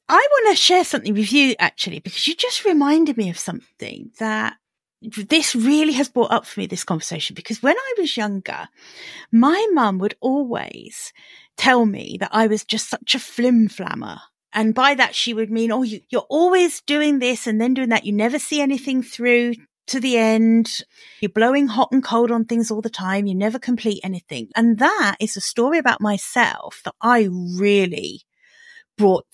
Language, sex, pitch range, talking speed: English, female, 205-275 Hz, 190 wpm